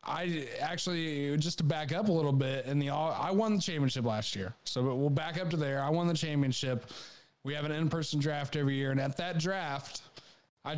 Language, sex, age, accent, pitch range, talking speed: English, male, 20-39, American, 135-160 Hz, 215 wpm